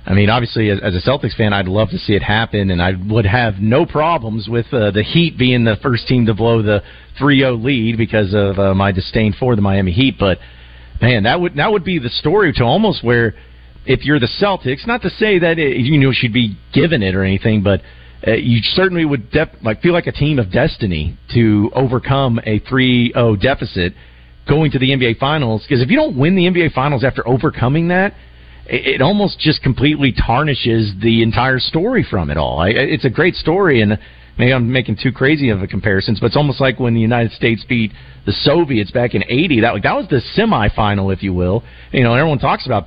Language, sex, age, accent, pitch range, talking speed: English, male, 40-59, American, 100-140 Hz, 220 wpm